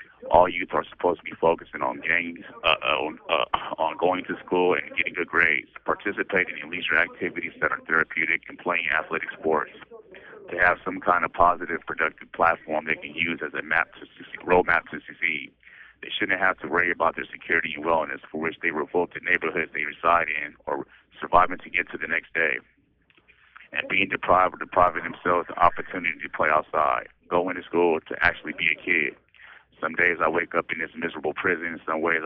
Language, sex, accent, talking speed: English, male, American, 200 wpm